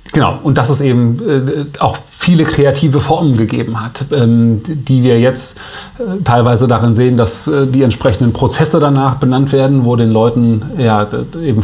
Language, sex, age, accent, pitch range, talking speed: German, male, 30-49, German, 115-135 Hz, 145 wpm